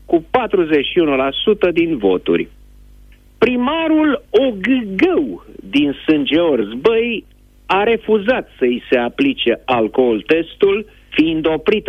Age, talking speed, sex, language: 50-69, 90 wpm, male, Romanian